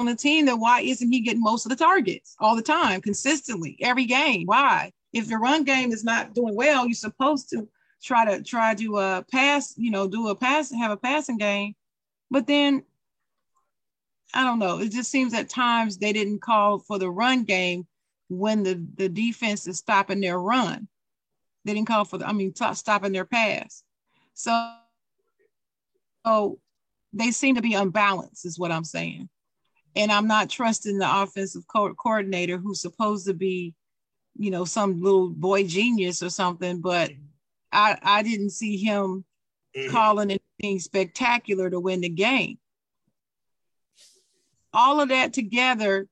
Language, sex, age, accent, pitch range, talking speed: English, female, 40-59, American, 195-250 Hz, 170 wpm